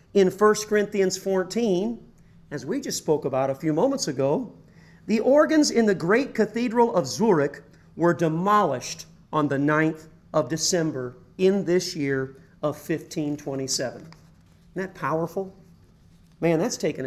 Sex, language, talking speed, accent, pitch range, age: male, English, 135 wpm, American, 155-195 Hz, 40-59